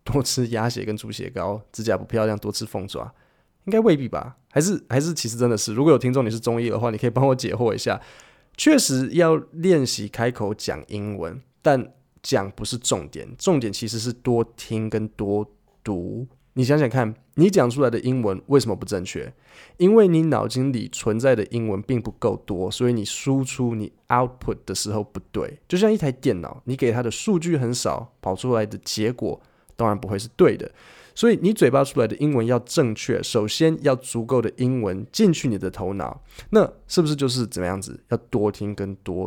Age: 20-39